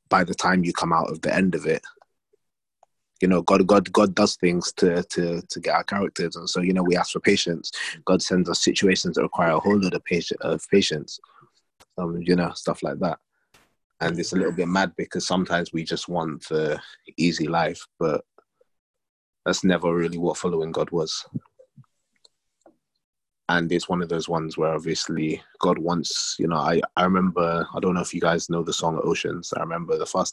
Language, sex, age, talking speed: English, male, 20-39, 200 wpm